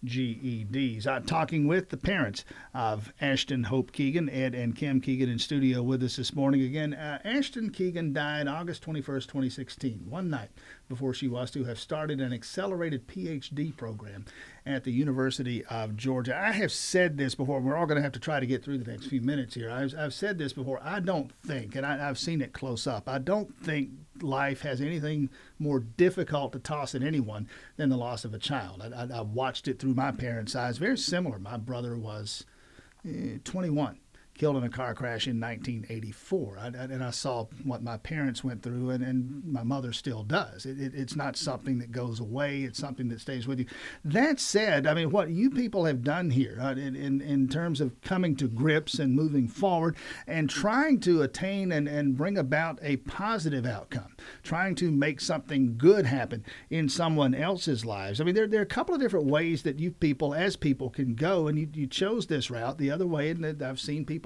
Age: 50-69